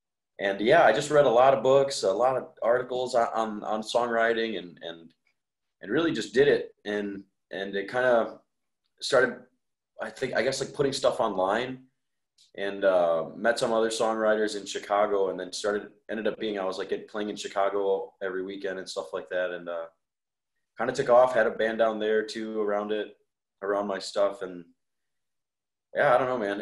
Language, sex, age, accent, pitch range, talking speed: English, male, 20-39, American, 95-120 Hz, 195 wpm